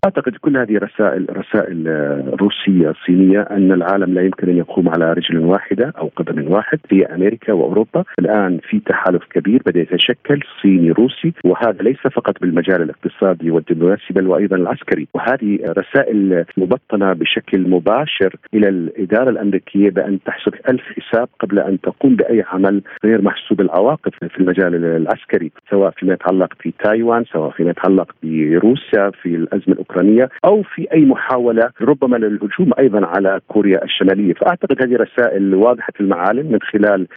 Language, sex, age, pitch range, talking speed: Arabic, male, 50-69, 95-115 Hz, 150 wpm